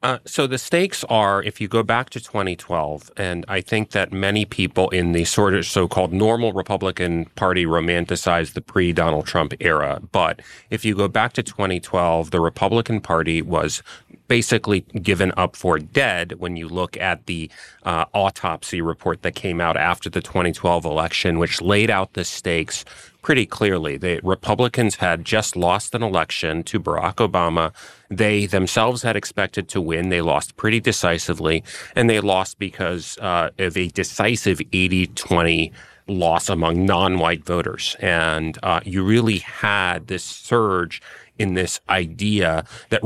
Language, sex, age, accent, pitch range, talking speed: English, male, 30-49, American, 85-105 Hz, 155 wpm